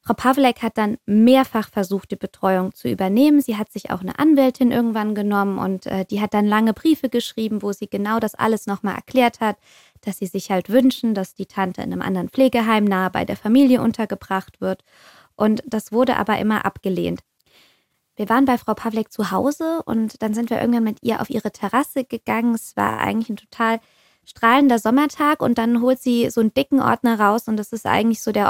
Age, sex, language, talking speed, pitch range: 20-39, female, German, 205 wpm, 205-240 Hz